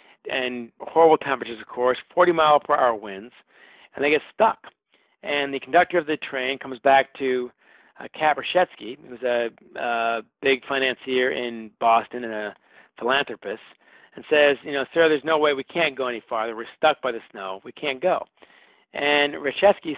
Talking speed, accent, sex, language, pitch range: 170 wpm, American, male, English, 125-155 Hz